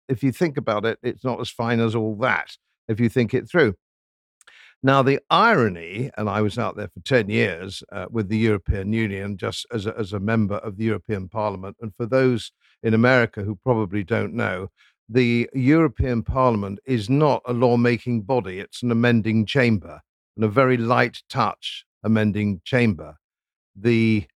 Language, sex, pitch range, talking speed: English, male, 105-125 Hz, 175 wpm